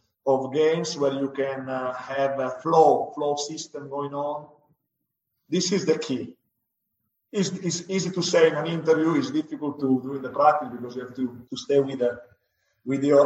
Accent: Italian